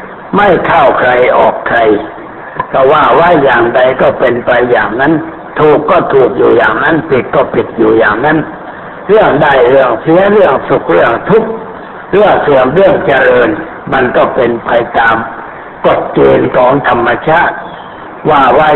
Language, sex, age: Thai, male, 60-79